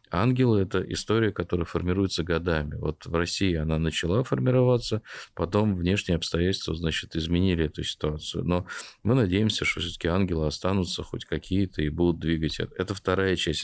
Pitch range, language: 80-100 Hz, Russian